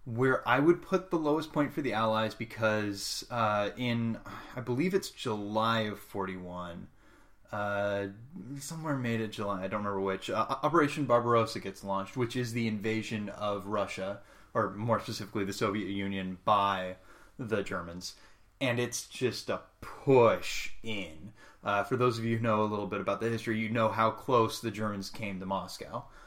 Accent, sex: American, male